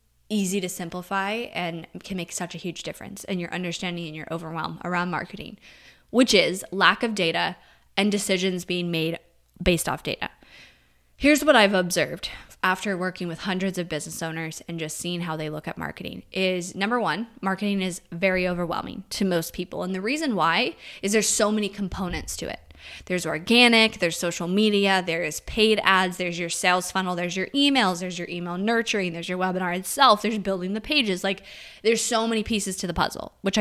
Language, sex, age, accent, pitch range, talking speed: English, female, 20-39, American, 175-210 Hz, 190 wpm